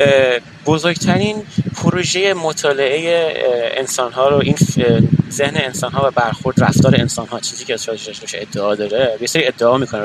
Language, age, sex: Persian, 30-49, male